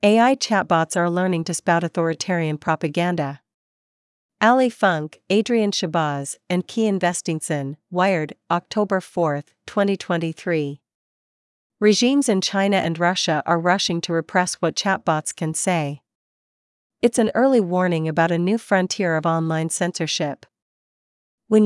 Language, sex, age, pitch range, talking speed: Vietnamese, female, 50-69, 160-200 Hz, 120 wpm